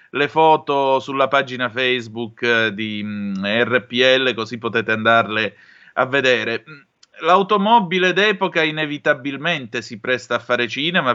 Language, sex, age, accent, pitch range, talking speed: Italian, male, 30-49, native, 115-145 Hz, 115 wpm